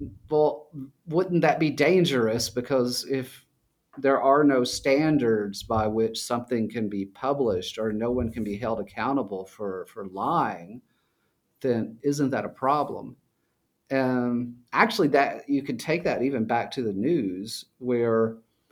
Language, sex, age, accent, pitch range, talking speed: English, male, 40-59, American, 110-140 Hz, 145 wpm